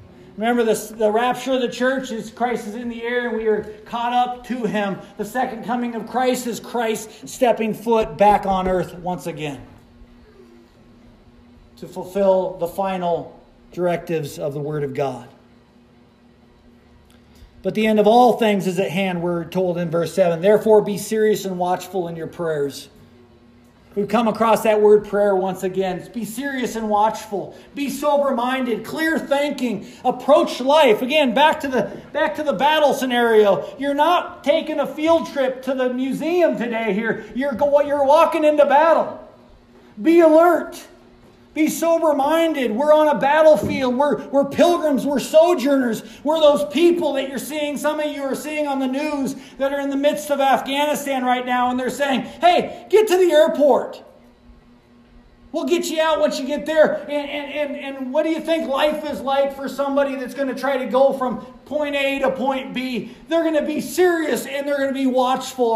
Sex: male